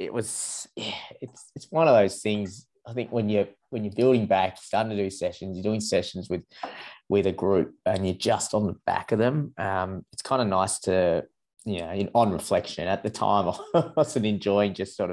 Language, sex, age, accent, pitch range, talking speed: English, male, 20-39, Australian, 95-115 Hz, 220 wpm